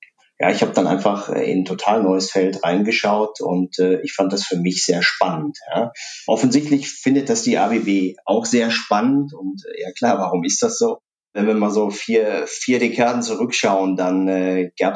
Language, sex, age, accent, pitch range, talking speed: German, male, 30-49, German, 90-105 Hz, 195 wpm